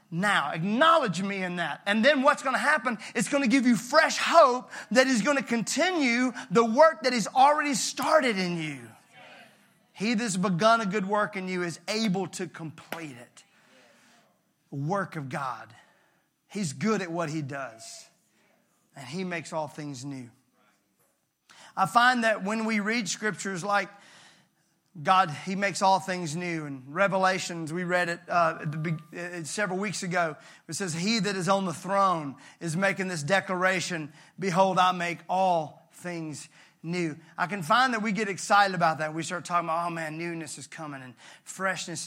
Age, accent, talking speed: 30-49, American, 170 wpm